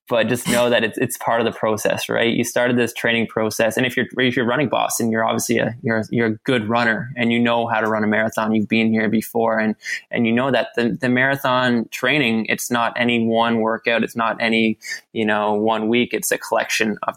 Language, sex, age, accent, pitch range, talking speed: English, male, 20-39, American, 110-125 Hz, 240 wpm